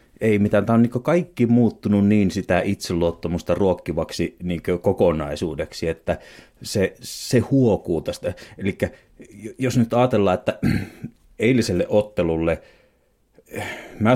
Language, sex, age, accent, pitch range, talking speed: Finnish, male, 30-49, native, 90-115 Hz, 110 wpm